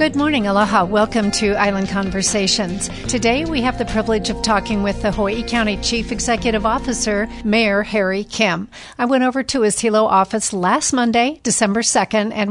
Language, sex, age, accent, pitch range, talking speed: English, female, 50-69, American, 195-225 Hz, 175 wpm